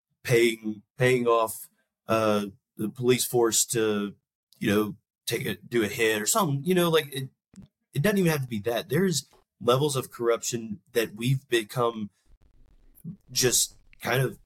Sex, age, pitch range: male, 30-49, 110-145 Hz